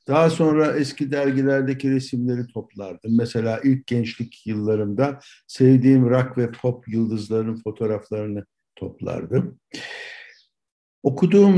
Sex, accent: male, native